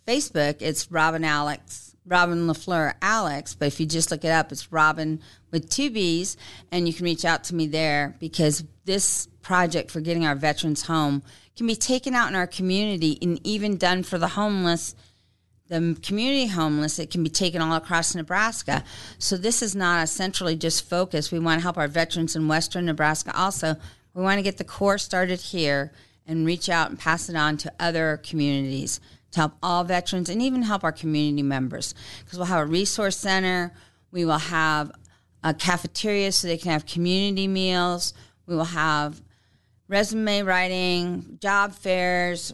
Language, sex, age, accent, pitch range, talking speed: English, female, 40-59, American, 155-195 Hz, 180 wpm